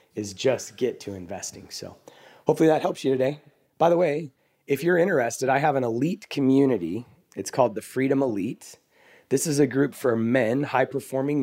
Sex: male